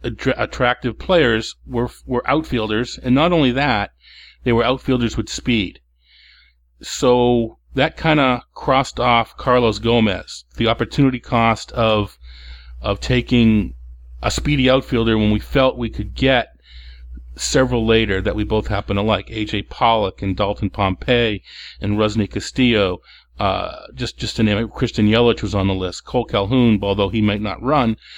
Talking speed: 155 wpm